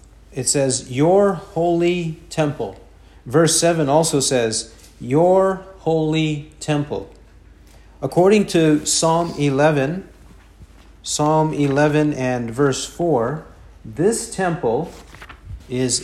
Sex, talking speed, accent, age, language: male, 90 wpm, American, 50-69, English